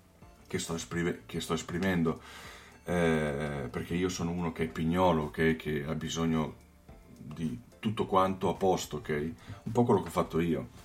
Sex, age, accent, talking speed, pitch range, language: male, 40-59, native, 170 wpm, 80-95 Hz, Italian